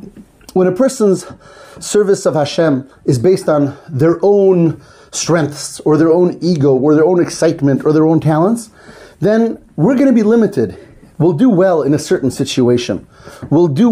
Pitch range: 135-180 Hz